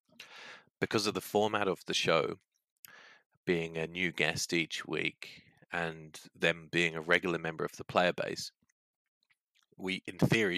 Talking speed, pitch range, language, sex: 145 wpm, 85-100 Hz, English, male